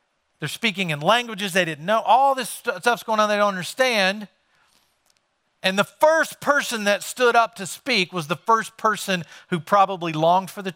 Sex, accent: male, American